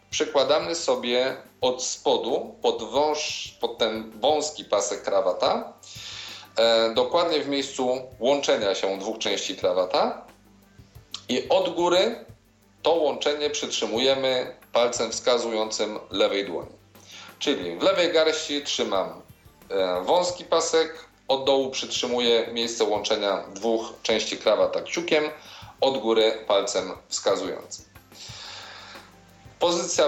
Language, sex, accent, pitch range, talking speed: Polish, male, native, 110-160 Hz, 100 wpm